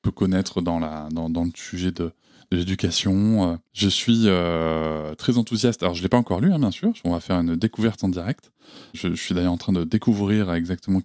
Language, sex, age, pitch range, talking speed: French, male, 20-39, 90-110 Hz, 225 wpm